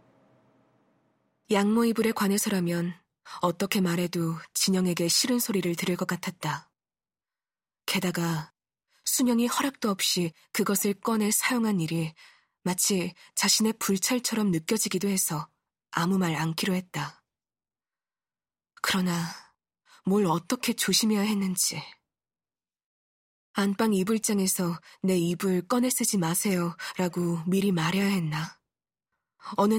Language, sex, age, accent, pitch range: Korean, female, 20-39, native, 170-210 Hz